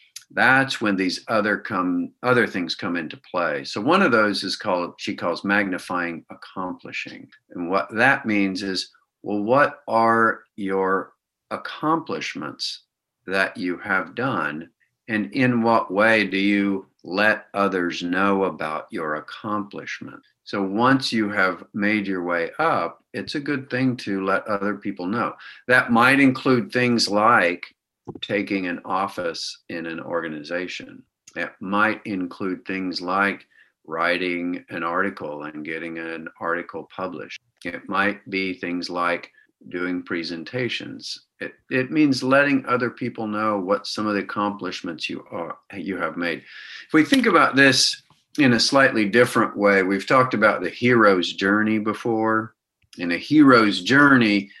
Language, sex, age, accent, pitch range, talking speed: English, male, 50-69, American, 95-125 Hz, 145 wpm